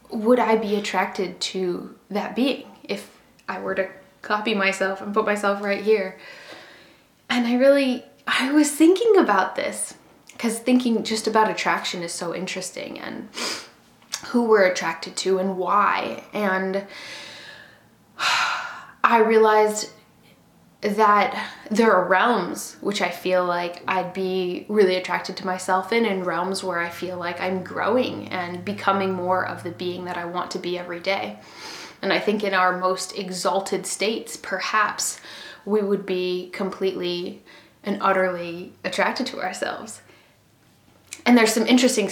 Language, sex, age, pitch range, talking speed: English, female, 10-29, 185-220 Hz, 145 wpm